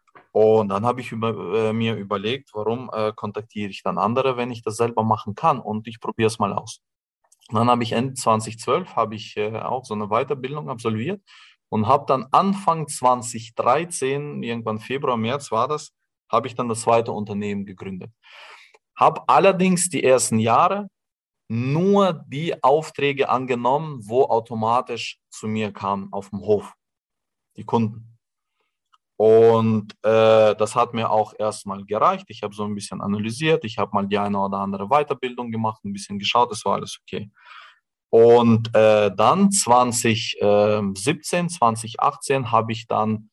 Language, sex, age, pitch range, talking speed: German, male, 20-39, 105-130 Hz, 150 wpm